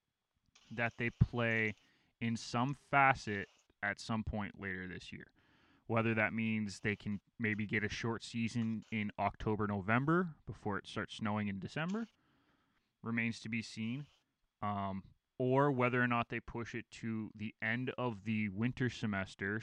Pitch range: 100-115 Hz